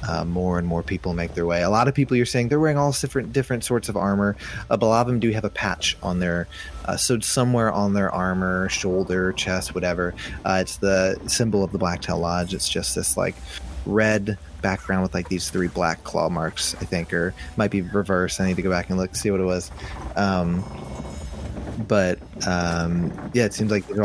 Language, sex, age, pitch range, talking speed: English, male, 20-39, 85-100 Hz, 215 wpm